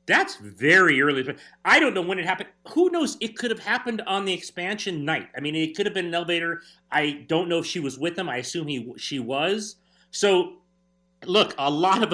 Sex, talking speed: male, 220 wpm